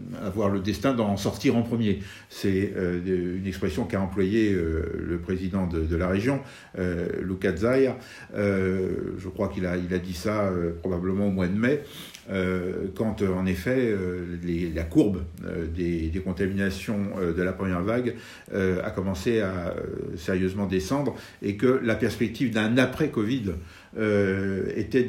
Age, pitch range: 60-79, 95-115 Hz